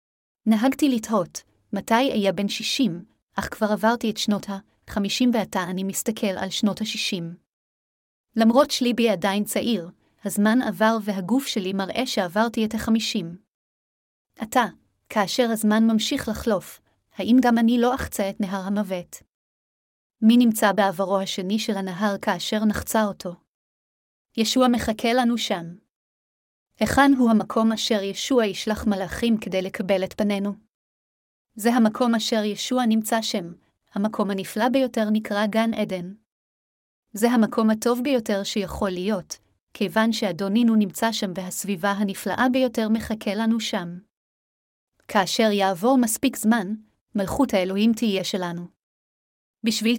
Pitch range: 195-230 Hz